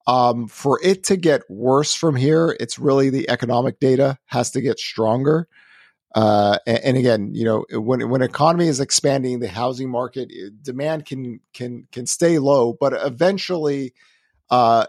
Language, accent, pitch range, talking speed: English, American, 120-150 Hz, 160 wpm